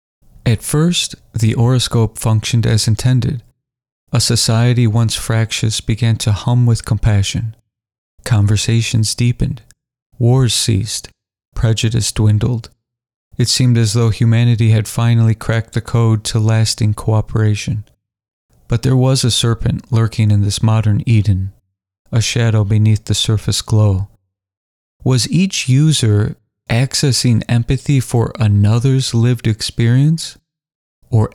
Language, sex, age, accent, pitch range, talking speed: English, male, 40-59, American, 110-125 Hz, 115 wpm